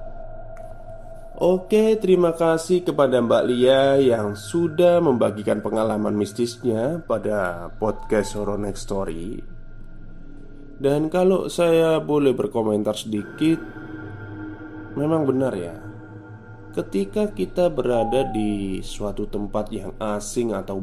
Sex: male